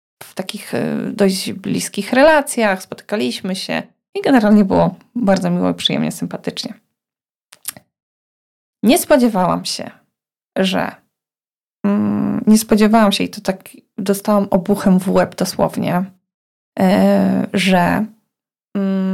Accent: native